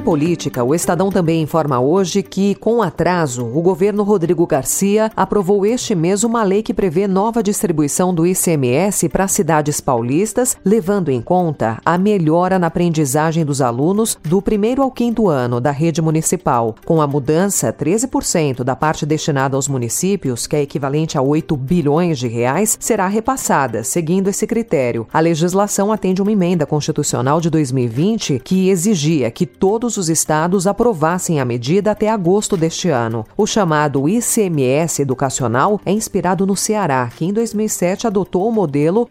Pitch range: 145-205 Hz